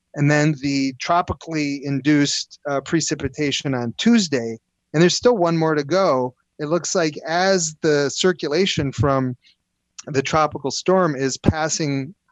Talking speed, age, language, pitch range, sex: 135 wpm, 30-49, English, 130-165 Hz, male